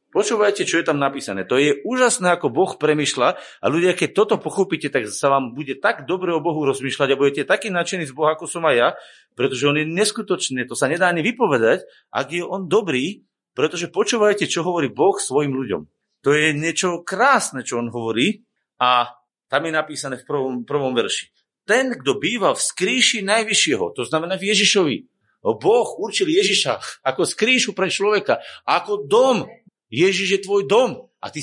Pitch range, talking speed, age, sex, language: 155-230 Hz, 180 wpm, 40-59, male, Slovak